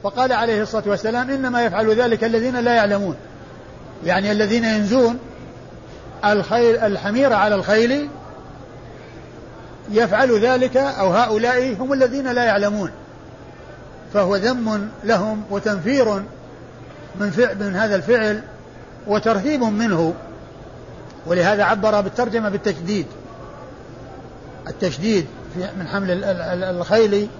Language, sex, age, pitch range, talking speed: Arabic, male, 50-69, 185-230 Hz, 95 wpm